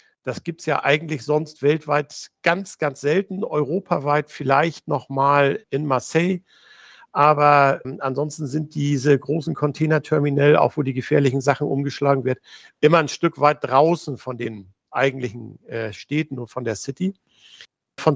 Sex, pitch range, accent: male, 135-165 Hz, German